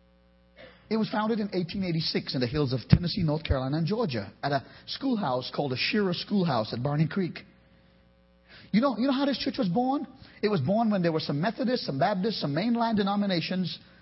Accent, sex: American, male